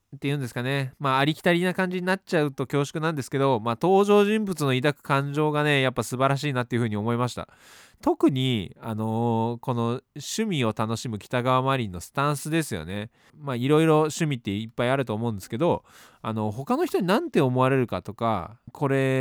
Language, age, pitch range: Japanese, 20-39, 115-170 Hz